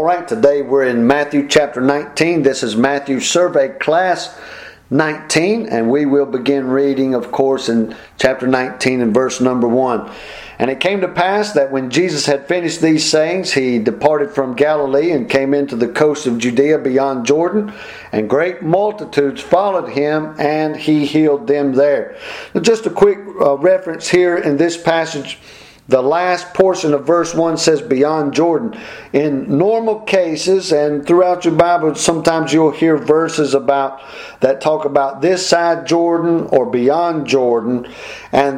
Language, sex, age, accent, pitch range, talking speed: English, male, 50-69, American, 140-170 Hz, 160 wpm